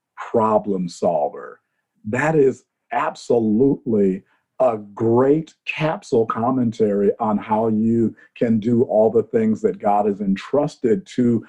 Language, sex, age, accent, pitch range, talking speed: English, male, 50-69, American, 110-180 Hz, 115 wpm